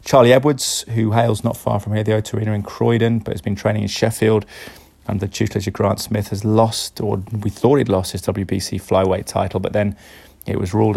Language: English